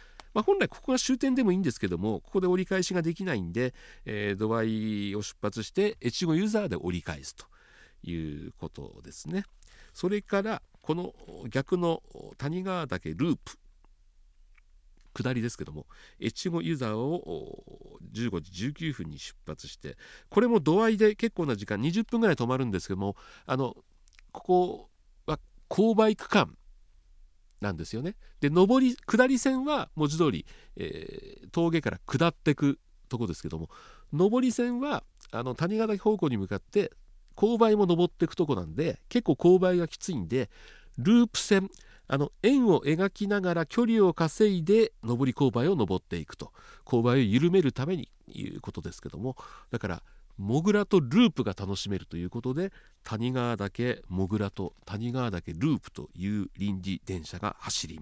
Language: Japanese